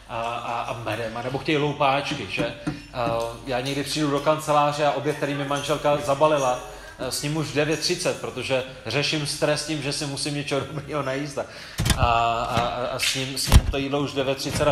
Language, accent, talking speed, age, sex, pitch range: Czech, native, 190 wpm, 30-49, male, 130-150 Hz